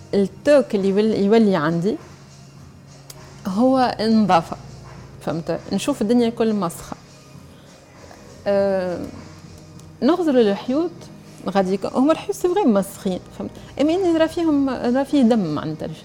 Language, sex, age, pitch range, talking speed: French, female, 30-49, 180-260 Hz, 95 wpm